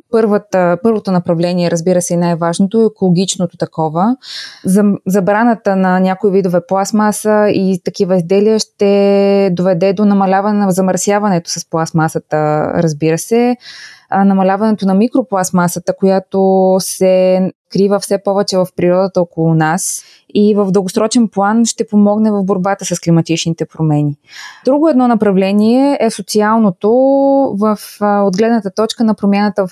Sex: female